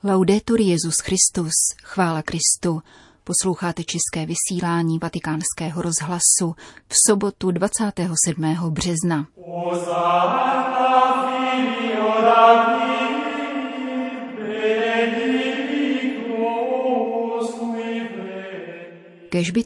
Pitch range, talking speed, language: 170-225 Hz, 45 wpm, Czech